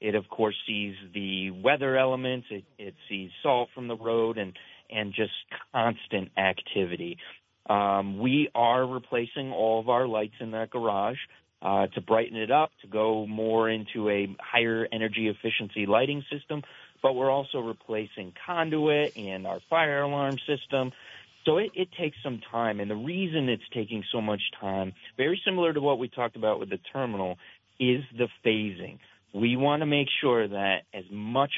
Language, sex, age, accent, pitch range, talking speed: English, male, 30-49, American, 105-135 Hz, 170 wpm